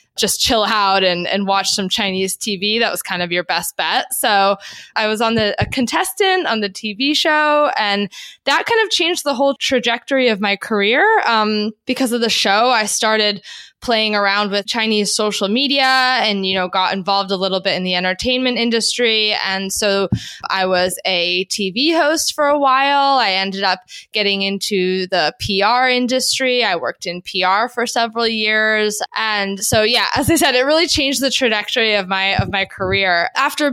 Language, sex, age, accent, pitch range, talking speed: English, female, 20-39, American, 195-240 Hz, 185 wpm